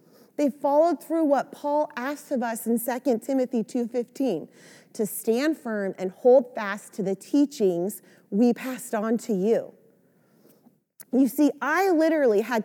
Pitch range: 215-270 Hz